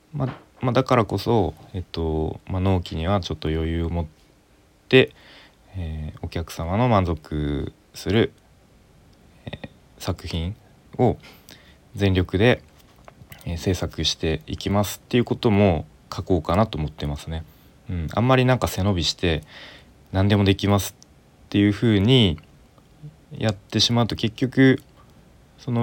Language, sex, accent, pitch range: Japanese, male, native, 85-110 Hz